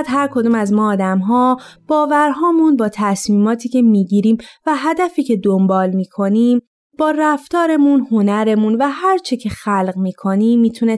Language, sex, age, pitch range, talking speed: Persian, female, 20-39, 200-290 Hz, 150 wpm